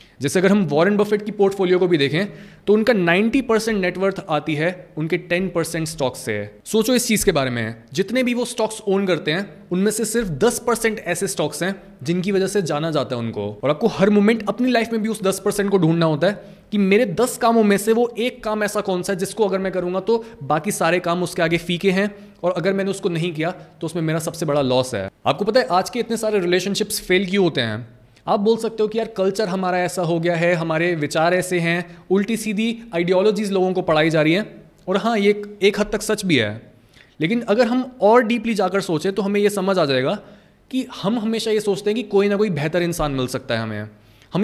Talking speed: 235 wpm